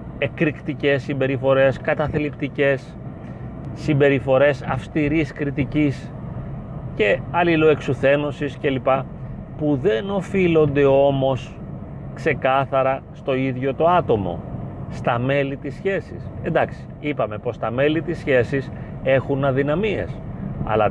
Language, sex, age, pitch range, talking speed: Greek, male, 30-49, 130-155 Hz, 90 wpm